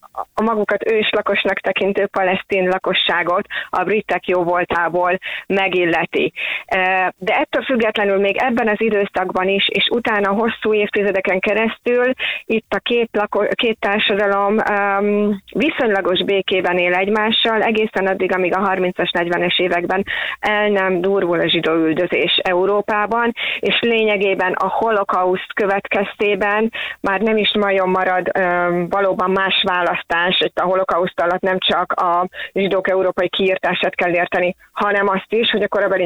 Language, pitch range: Hungarian, 180-210 Hz